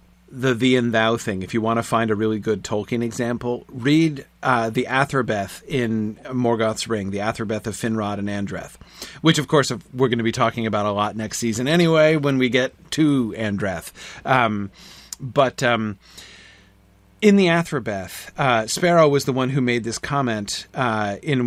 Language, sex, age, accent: English, male, 40-59, American